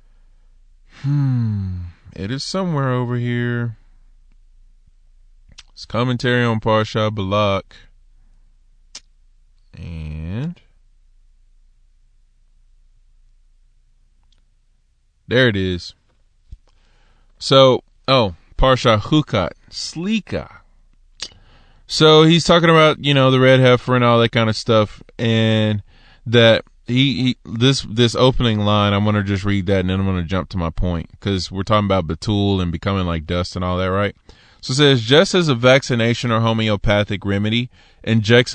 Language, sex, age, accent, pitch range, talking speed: English, male, 20-39, American, 95-125 Hz, 125 wpm